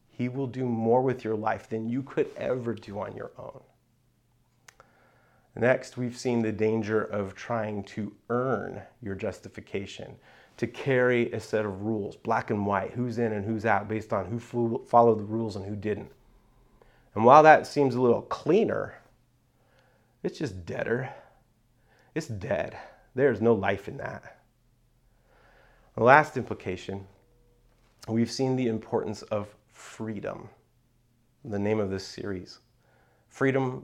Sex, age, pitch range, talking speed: male, 30-49, 110-125 Hz, 145 wpm